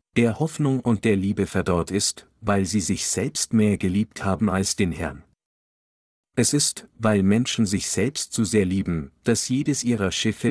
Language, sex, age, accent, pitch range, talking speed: German, male, 50-69, German, 95-120 Hz, 170 wpm